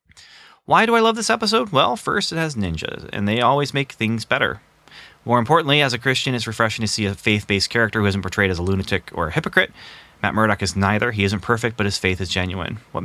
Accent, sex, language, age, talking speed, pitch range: American, male, English, 30-49, 235 wpm, 100-130 Hz